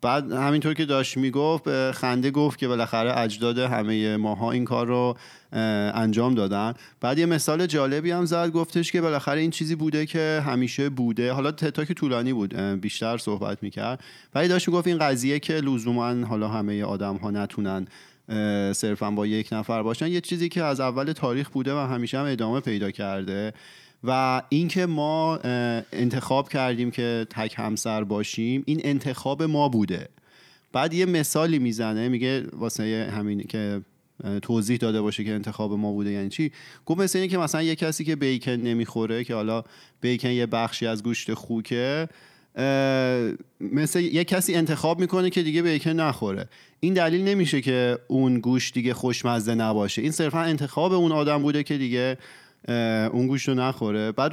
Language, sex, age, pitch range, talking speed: Persian, male, 30-49, 110-150 Hz, 160 wpm